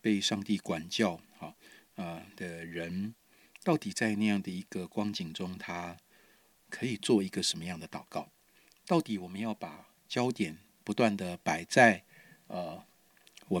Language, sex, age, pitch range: Chinese, male, 50-69, 95-115 Hz